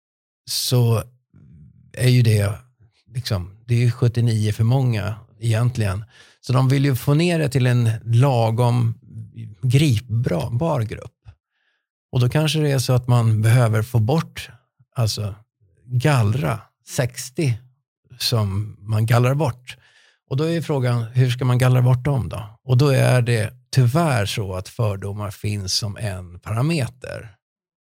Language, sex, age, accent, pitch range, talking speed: Swedish, male, 50-69, native, 110-130 Hz, 140 wpm